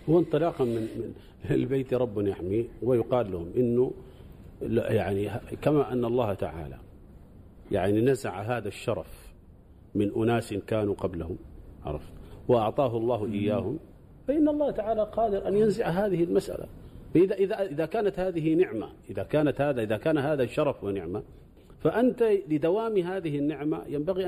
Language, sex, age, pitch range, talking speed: Arabic, male, 50-69, 115-170 Hz, 125 wpm